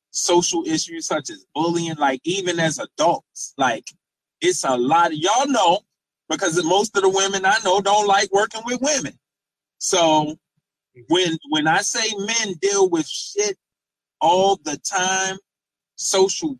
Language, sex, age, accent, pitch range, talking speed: English, male, 20-39, American, 160-200 Hz, 145 wpm